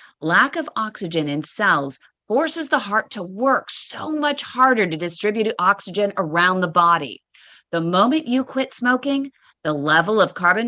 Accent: American